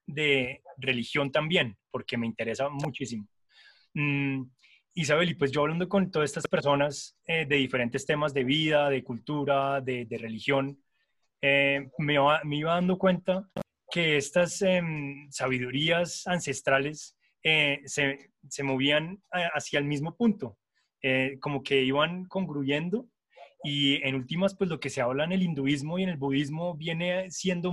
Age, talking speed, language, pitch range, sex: 20-39, 150 wpm, Spanish, 135-170 Hz, male